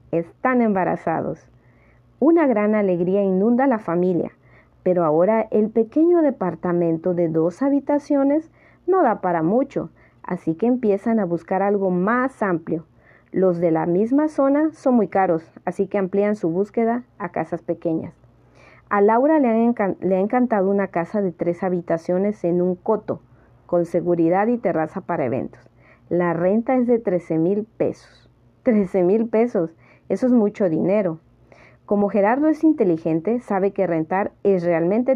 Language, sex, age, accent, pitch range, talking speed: Spanish, female, 40-59, American, 170-235 Hz, 155 wpm